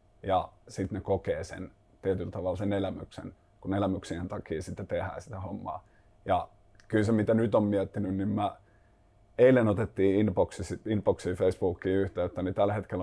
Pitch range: 95-105 Hz